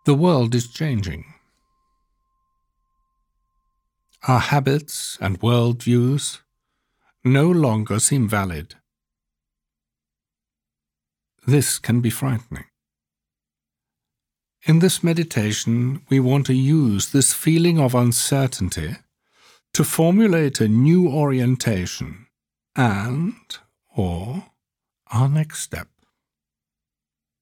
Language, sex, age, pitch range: English, male, 60-79, 95-155 Hz